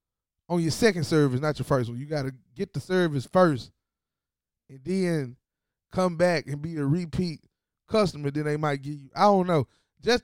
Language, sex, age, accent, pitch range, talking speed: English, male, 20-39, American, 140-230 Hz, 195 wpm